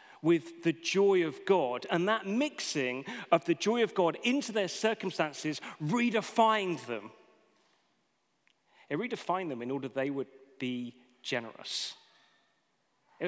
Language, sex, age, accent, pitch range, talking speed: English, male, 40-59, British, 145-200 Hz, 125 wpm